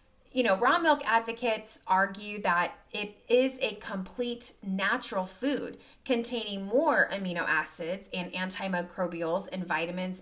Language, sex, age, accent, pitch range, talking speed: English, female, 30-49, American, 185-255 Hz, 125 wpm